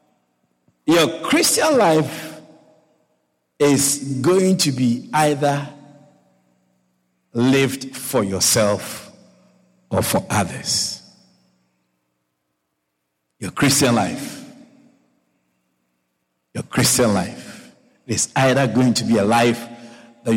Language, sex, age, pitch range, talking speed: English, male, 50-69, 105-140 Hz, 80 wpm